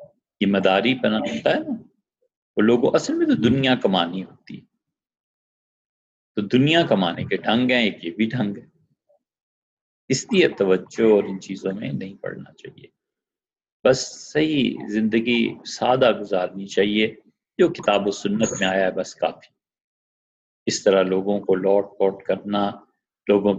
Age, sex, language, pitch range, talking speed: 50-69, male, Urdu, 95-125 Hz, 145 wpm